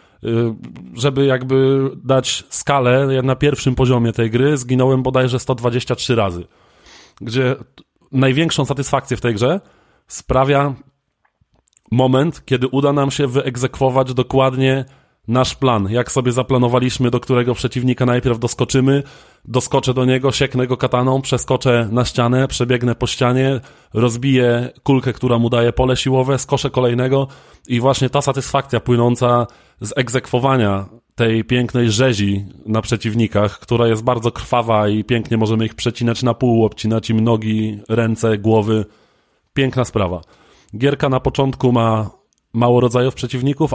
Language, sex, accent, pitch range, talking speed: Polish, male, native, 115-130 Hz, 130 wpm